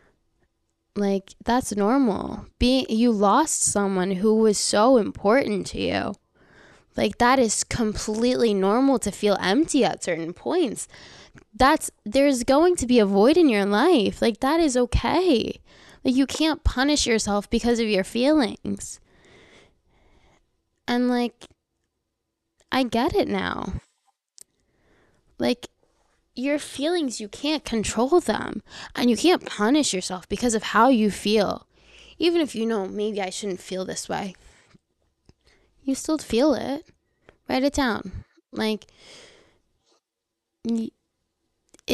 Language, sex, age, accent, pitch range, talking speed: English, female, 10-29, American, 205-265 Hz, 125 wpm